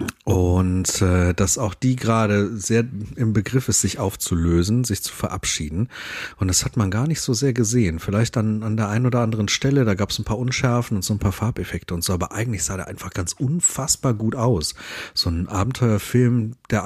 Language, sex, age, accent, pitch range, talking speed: German, male, 40-59, German, 90-120 Hz, 205 wpm